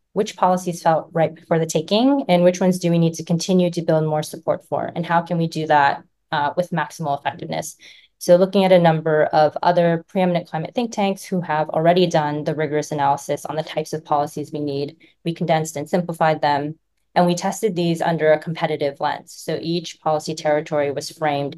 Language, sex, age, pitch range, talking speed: English, female, 20-39, 150-175 Hz, 205 wpm